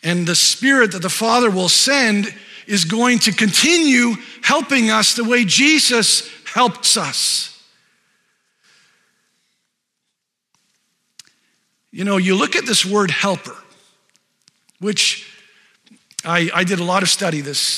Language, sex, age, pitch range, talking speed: English, male, 50-69, 160-215 Hz, 120 wpm